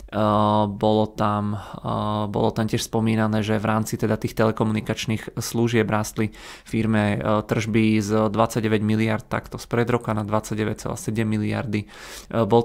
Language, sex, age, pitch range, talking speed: Czech, male, 20-39, 110-115 Hz, 125 wpm